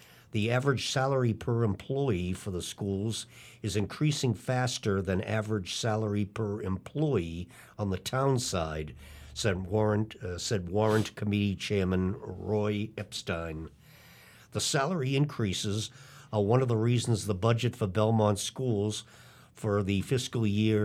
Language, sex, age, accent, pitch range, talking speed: English, male, 50-69, American, 100-125 Hz, 130 wpm